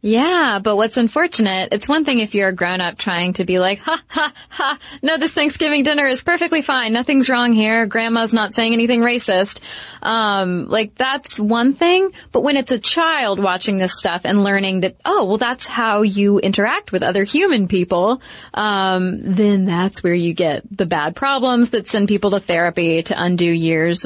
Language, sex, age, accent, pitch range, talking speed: English, female, 20-39, American, 185-250 Hz, 190 wpm